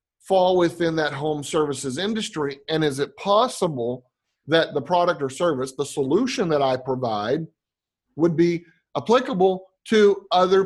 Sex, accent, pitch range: male, American, 140-195 Hz